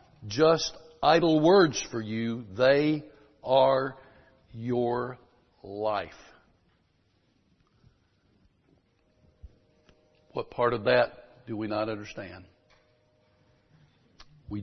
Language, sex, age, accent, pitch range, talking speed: English, male, 60-79, American, 105-130 Hz, 75 wpm